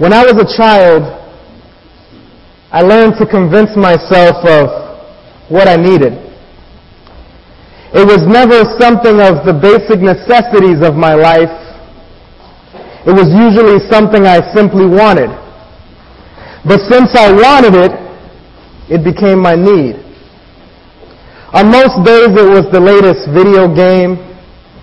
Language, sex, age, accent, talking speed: English, male, 30-49, American, 120 wpm